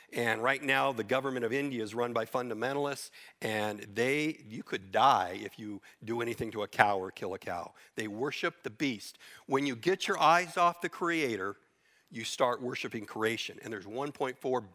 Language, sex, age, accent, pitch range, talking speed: English, male, 50-69, American, 110-145 Hz, 185 wpm